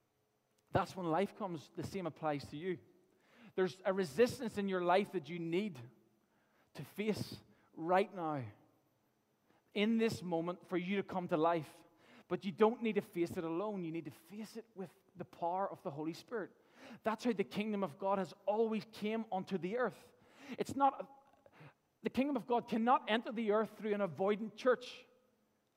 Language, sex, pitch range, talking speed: English, male, 170-225 Hz, 180 wpm